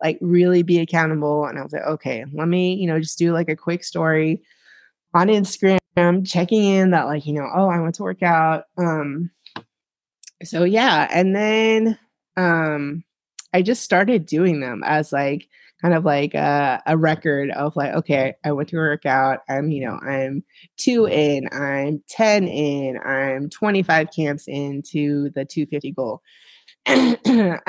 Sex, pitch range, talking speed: female, 150-195 Hz, 165 wpm